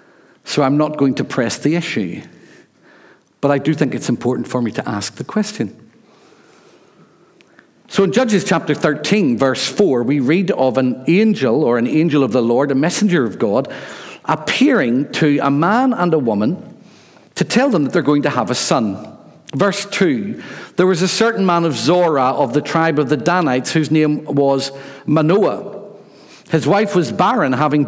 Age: 50-69